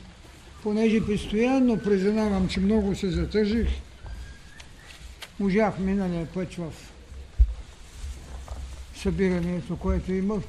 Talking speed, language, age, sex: 80 wpm, Bulgarian, 60-79, male